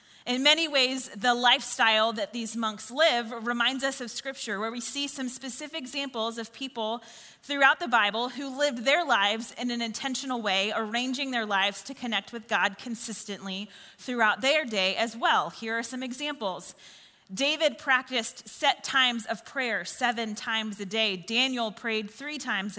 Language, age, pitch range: English, 30-49, 225-275 Hz